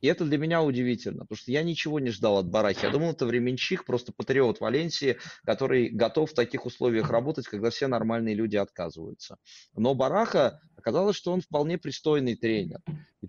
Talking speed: 180 wpm